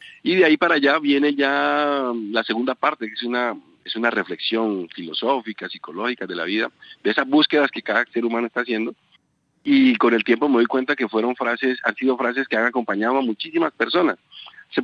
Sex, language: male, Spanish